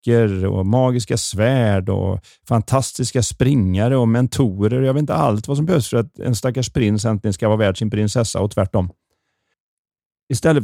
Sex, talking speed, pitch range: male, 160 wpm, 105-130 Hz